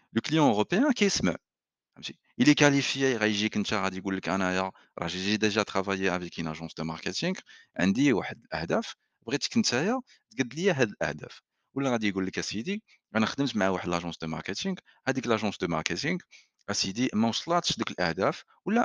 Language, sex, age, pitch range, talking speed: French, male, 40-59, 95-135 Hz, 100 wpm